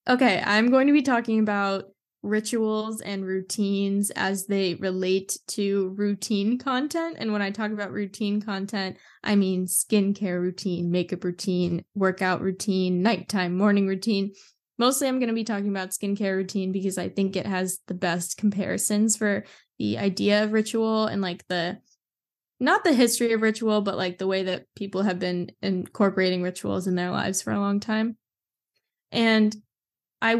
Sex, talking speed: female, 165 wpm